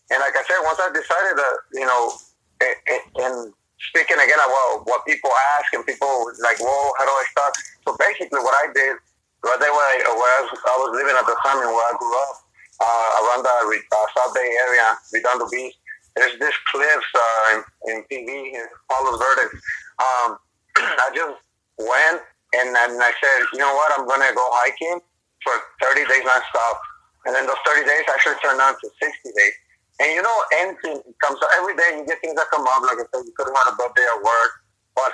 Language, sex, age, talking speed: English, male, 30-49, 215 wpm